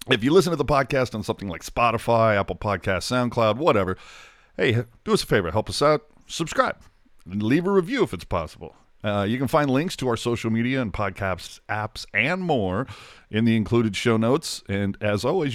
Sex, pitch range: male, 110-150 Hz